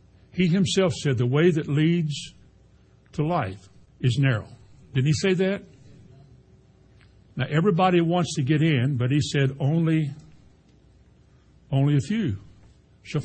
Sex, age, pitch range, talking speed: male, 60-79, 115-150 Hz, 130 wpm